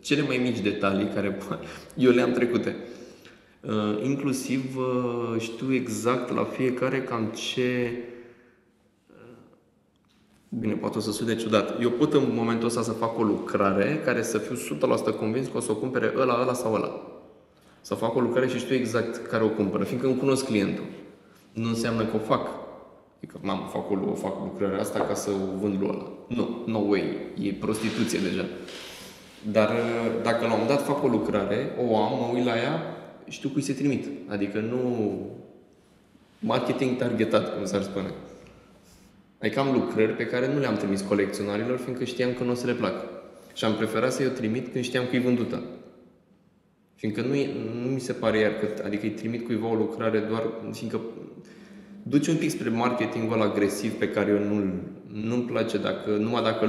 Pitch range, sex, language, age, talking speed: 105-125 Hz, male, Romanian, 20-39, 175 wpm